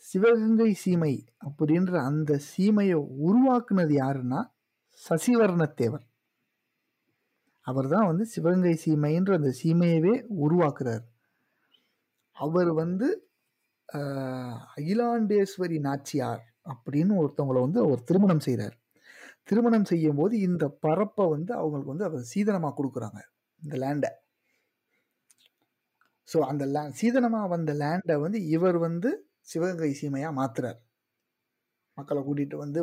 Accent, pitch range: native, 140-190 Hz